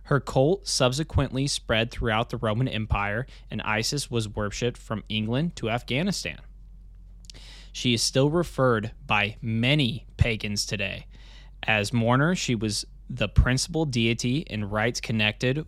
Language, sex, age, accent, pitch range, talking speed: English, male, 20-39, American, 110-130 Hz, 130 wpm